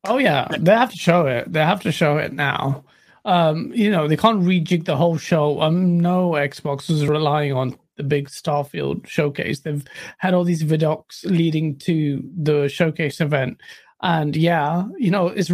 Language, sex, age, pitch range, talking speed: English, male, 30-49, 155-200 Hz, 180 wpm